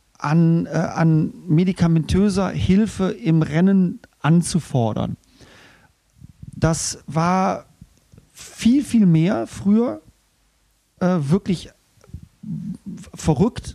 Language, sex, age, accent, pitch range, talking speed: German, male, 40-59, German, 160-190 Hz, 70 wpm